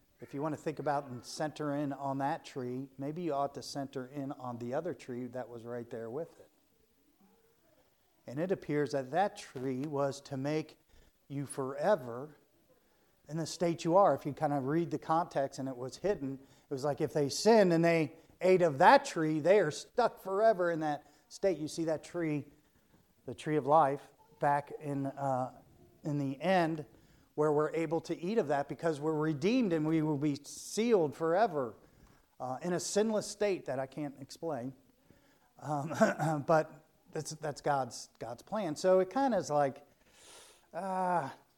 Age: 50-69